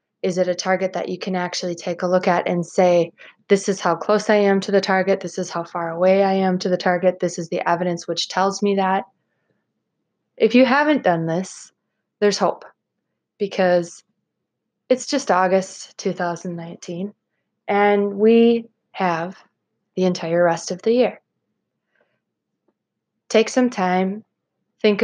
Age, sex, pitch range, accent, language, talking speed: 20-39, female, 180-215 Hz, American, English, 160 wpm